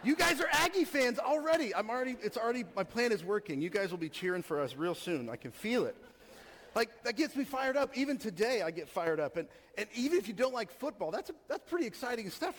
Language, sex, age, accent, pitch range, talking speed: English, male, 40-59, American, 160-235 Hz, 255 wpm